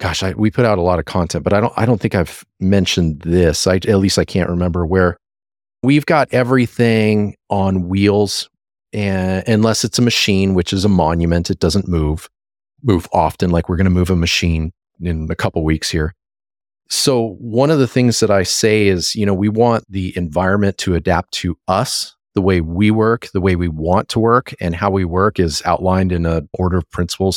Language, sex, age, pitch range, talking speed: English, male, 40-59, 90-110 Hz, 215 wpm